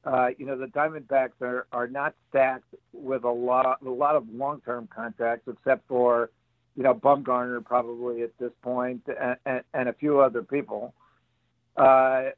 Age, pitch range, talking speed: 60-79, 120-145 Hz, 170 wpm